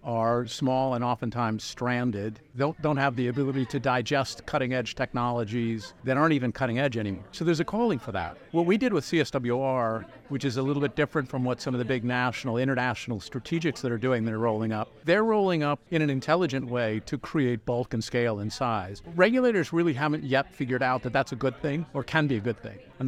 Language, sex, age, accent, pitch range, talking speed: English, male, 50-69, American, 120-145 Hz, 220 wpm